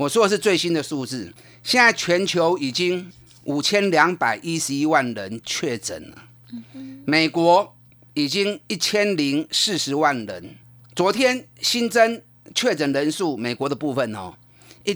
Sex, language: male, Chinese